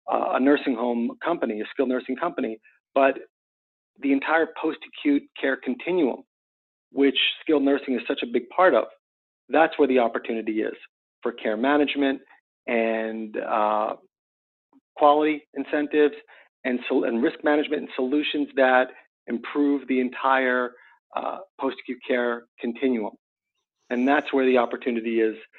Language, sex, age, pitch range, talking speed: English, male, 40-59, 115-140 Hz, 140 wpm